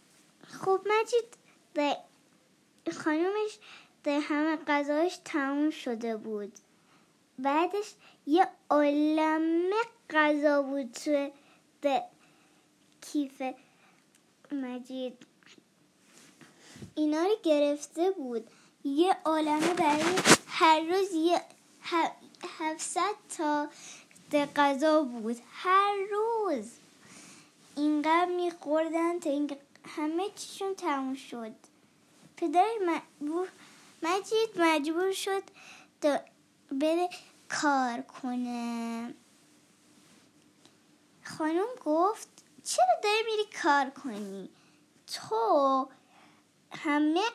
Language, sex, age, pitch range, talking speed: Persian, male, 10-29, 285-360 Hz, 70 wpm